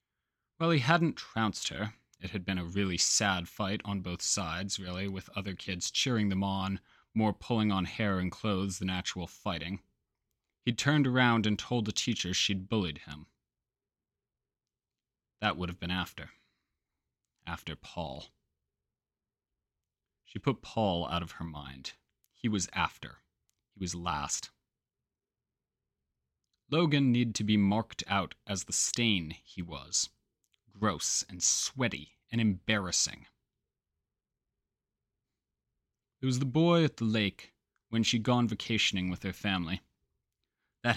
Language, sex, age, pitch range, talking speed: English, male, 30-49, 95-115 Hz, 130 wpm